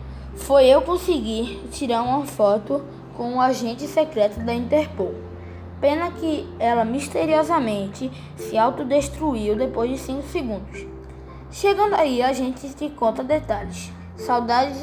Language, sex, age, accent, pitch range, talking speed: Portuguese, female, 10-29, Brazilian, 205-295 Hz, 120 wpm